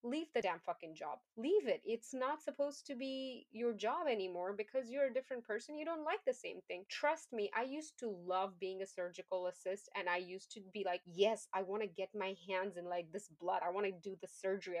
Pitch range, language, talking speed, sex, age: 190-260 Hz, English, 240 wpm, female, 20-39